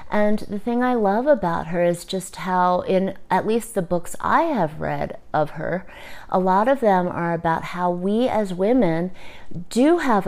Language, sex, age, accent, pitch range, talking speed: English, female, 30-49, American, 175-220 Hz, 185 wpm